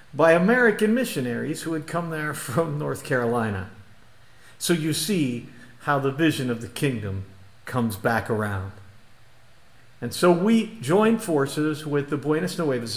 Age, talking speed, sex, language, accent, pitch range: 50-69, 145 wpm, male, English, American, 120-180 Hz